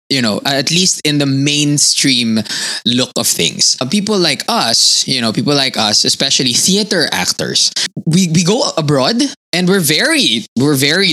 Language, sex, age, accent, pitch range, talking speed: English, male, 20-39, Filipino, 130-190 Hz, 160 wpm